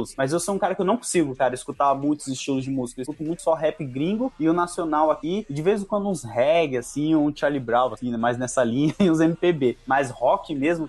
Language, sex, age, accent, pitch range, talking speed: Portuguese, male, 20-39, Brazilian, 140-190 Hz, 250 wpm